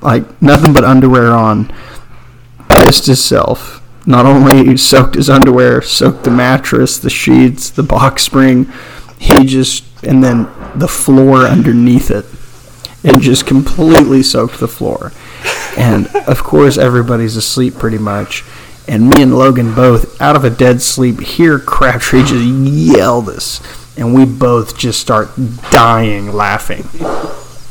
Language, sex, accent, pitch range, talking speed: English, male, American, 115-130 Hz, 140 wpm